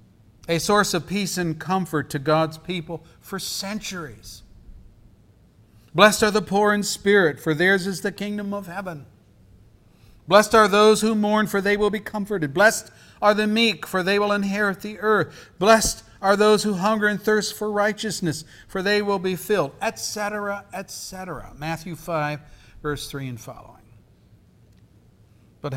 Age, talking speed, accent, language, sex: 50-69, 155 wpm, American, English, male